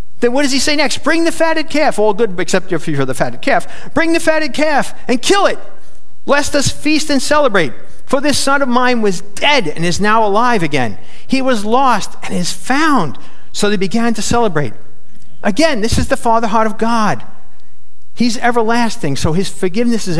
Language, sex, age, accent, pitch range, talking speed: English, male, 50-69, American, 170-275 Hz, 200 wpm